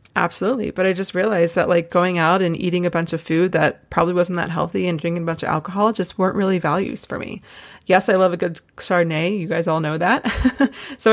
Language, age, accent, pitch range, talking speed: English, 20-39, American, 170-190 Hz, 235 wpm